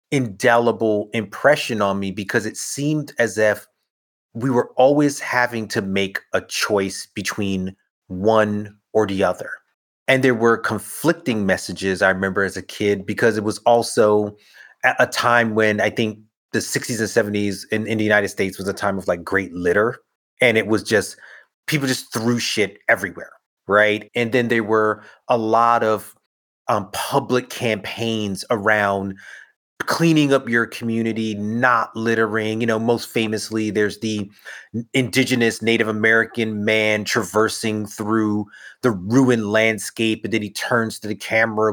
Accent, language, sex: American, English, male